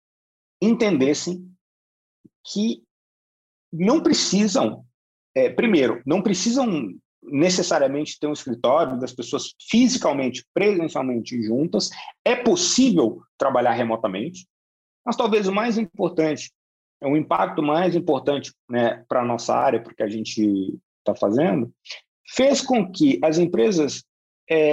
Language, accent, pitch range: Portuguese, Brazilian, 145-235 Hz